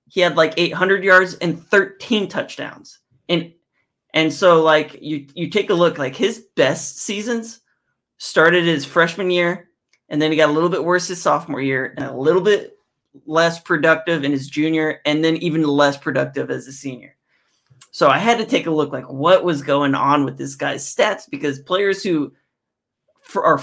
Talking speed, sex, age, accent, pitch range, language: 185 wpm, male, 30-49, American, 140-170 Hz, English